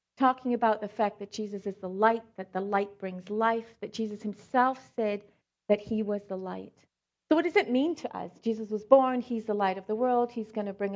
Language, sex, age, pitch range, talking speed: English, female, 50-69, 185-245 Hz, 235 wpm